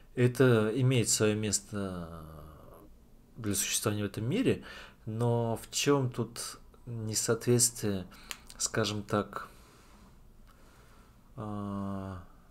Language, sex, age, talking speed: Russian, male, 20-39, 80 wpm